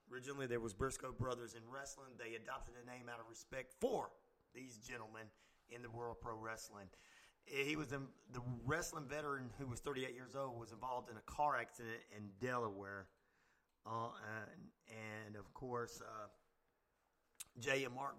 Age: 30-49